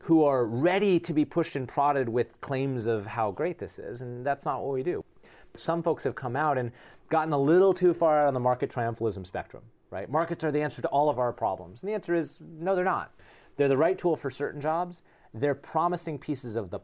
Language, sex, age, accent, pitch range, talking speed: English, male, 30-49, American, 120-160 Hz, 240 wpm